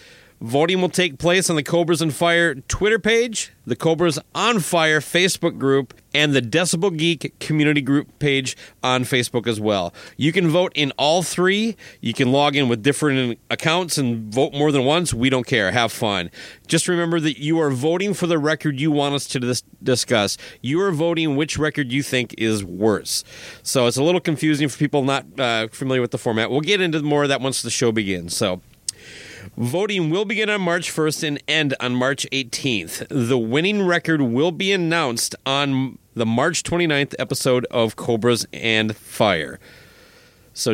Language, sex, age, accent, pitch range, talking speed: English, male, 30-49, American, 120-165 Hz, 185 wpm